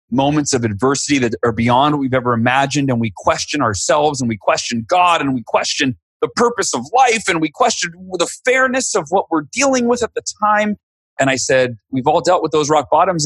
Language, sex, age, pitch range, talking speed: English, male, 30-49, 105-145 Hz, 215 wpm